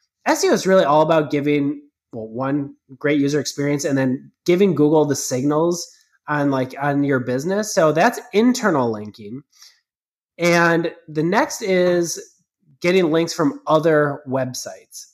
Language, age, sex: English, 20-39, male